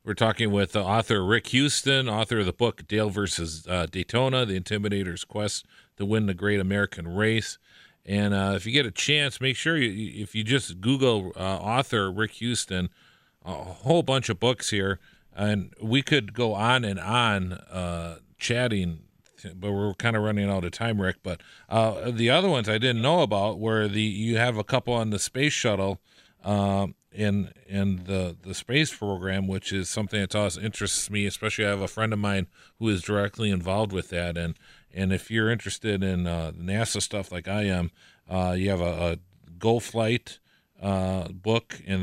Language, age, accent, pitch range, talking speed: English, 40-59, American, 95-110 Hz, 190 wpm